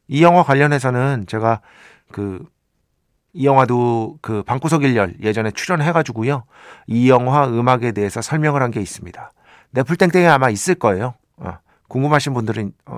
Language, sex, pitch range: Korean, male, 110-160 Hz